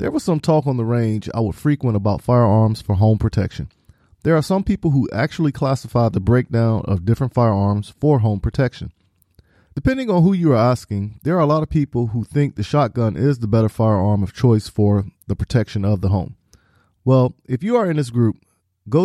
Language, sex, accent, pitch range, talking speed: English, male, American, 105-140 Hz, 210 wpm